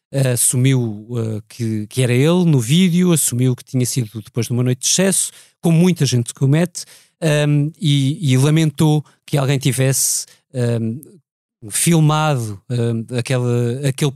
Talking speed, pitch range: 150 wpm, 125-150 Hz